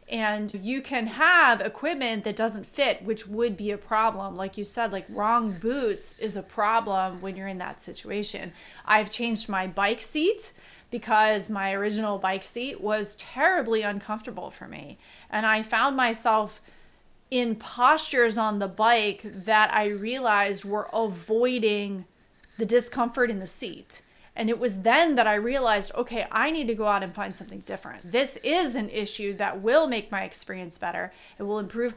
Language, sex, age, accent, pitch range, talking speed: English, female, 30-49, American, 205-235 Hz, 170 wpm